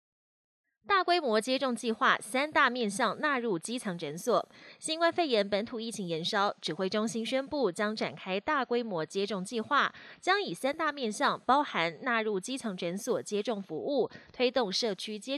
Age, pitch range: 20-39, 195-270 Hz